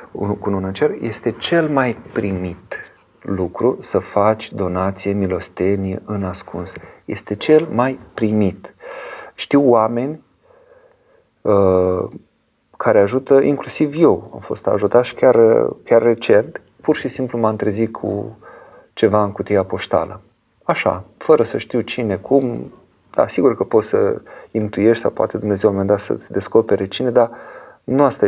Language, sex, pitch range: Romanian, male, 100-130 Hz